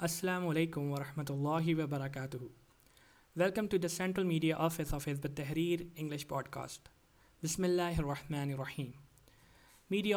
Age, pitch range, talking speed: 20-39, 140-170 Hz, 120 wpm